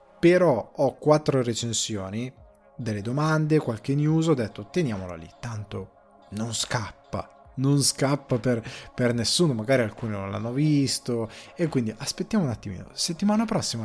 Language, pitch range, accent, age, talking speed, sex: Italian, 110-140 Hz, native, 20-39, 140 wpm, male